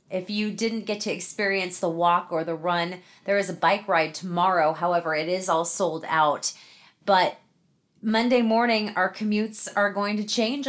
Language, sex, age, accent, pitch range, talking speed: English, female, 30-49, American, 165-210 Hz, 180 wpm